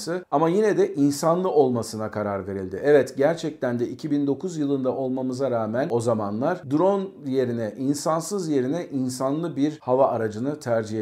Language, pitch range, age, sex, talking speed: Turkish, 125-150 Hz, 50-69, male, 135 wpm